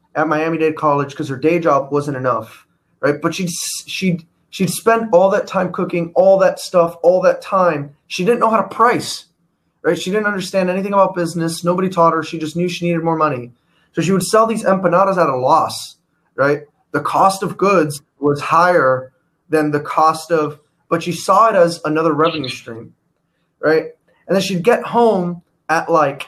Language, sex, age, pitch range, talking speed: English, male, 20-39, 145-175 Hz, 190 wpm